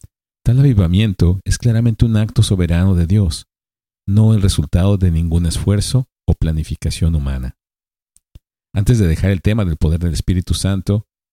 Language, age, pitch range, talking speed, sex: Spanish, 50-69, 80-105 Hz, 150 wpm, male